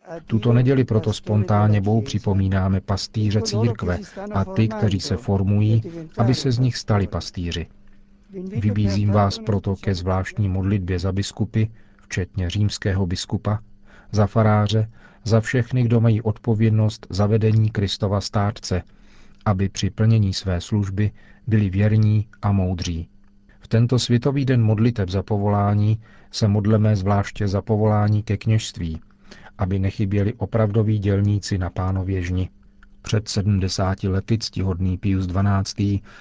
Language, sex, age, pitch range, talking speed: Czech, male, 40-59, 95-110 Hz, 125 wpm